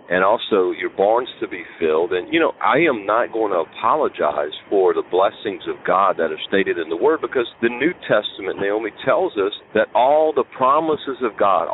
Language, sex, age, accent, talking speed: English, male, 50-69, American, 205 wpm